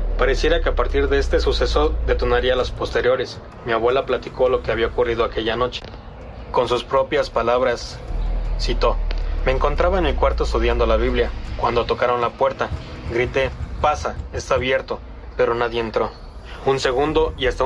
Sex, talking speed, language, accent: male, 160 wpm, Spanish, Mexican